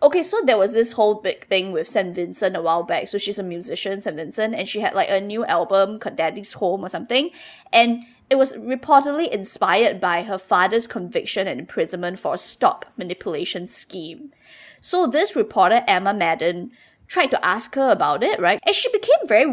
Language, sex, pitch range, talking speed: English, female, 195-285 Hz, 195 wpm